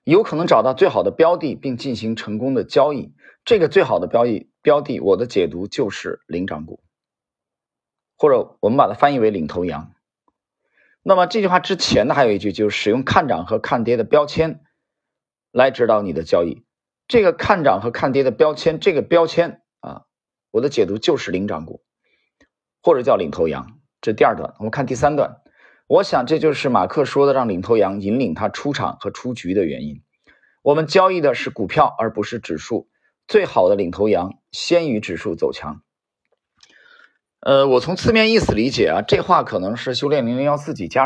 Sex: male